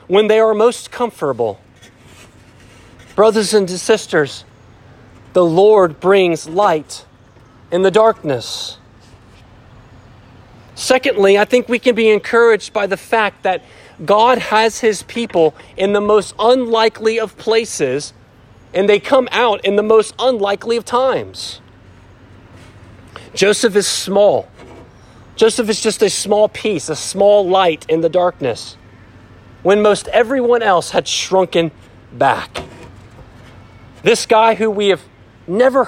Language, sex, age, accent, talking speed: English, male, 40-59, American, 125 wpm